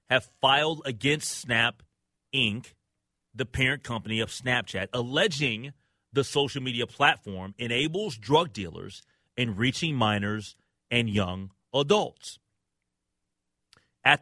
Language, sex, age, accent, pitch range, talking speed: English, male, 30-49, American, 95-120 Hz, 105 wpm